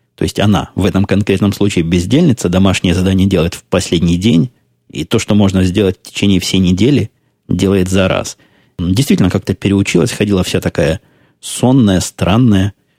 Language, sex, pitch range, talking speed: Russian, male, 90-105 Hz, 155 wpm